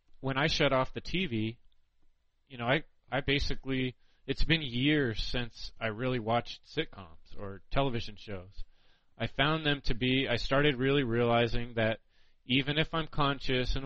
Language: English